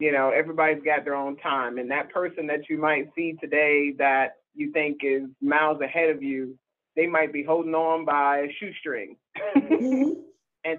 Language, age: English, 30-49